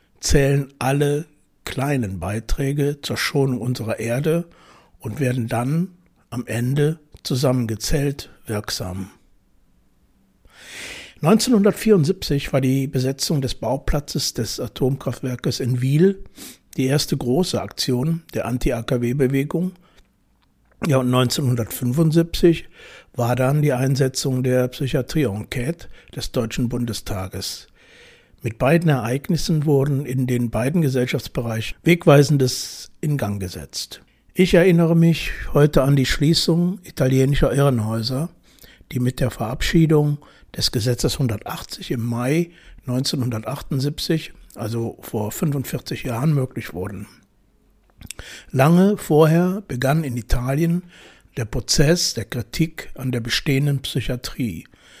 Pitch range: 125-155 Hz